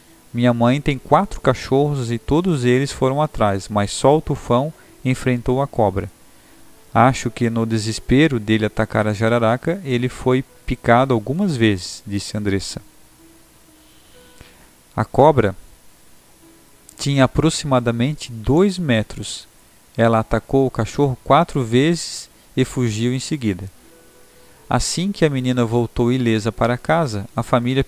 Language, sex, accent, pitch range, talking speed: Portuguese, male, Brazilian, 110-135 Hz, 125 wpm